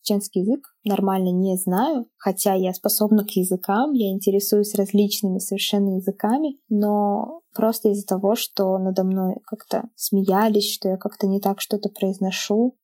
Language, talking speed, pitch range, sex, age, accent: Russian, 145 wpm, 190-220 Hz, female, 20-39, native